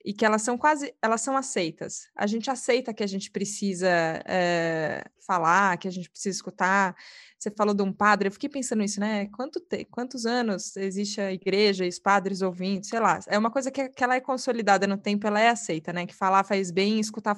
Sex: female